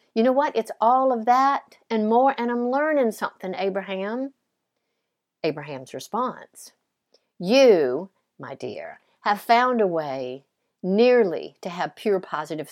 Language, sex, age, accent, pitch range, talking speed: English, female, 60-79, American, 190-270 Hz, 130 wpm